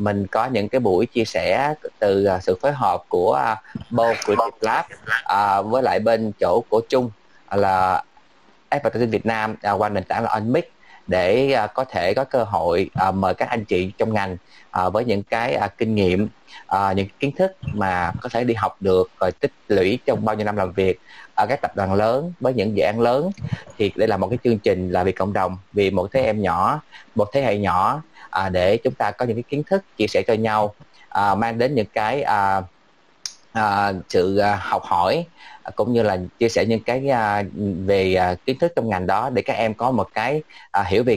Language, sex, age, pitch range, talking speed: Vietnamese, male, 20-39, 95-115 Hz, 210 wpm